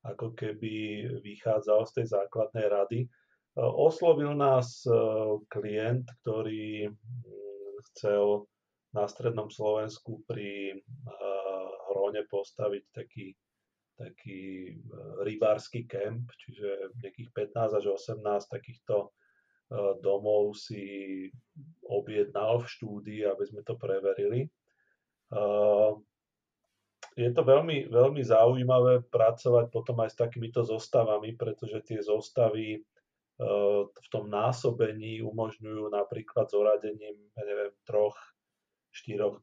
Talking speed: 95 wpm